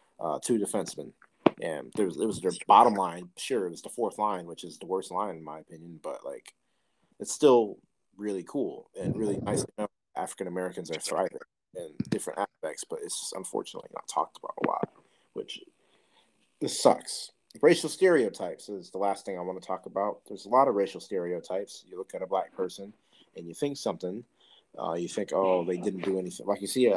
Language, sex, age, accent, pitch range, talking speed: English, male, 30-49, American, 90-125 Hz, 210 wpm